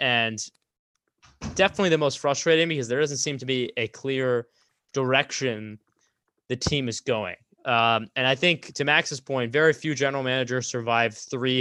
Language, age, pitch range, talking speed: English, 20-39, 120-150 Hz, 160 wpm